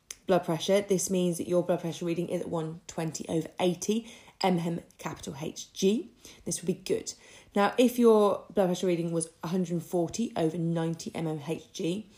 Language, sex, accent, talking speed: English, female, British, 155 wpm